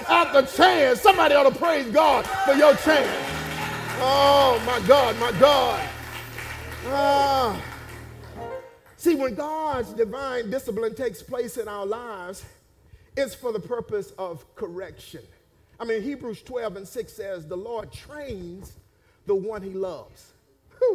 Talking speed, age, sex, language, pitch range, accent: 135 wpm, 50-69, male, English, 230-310 Hz, American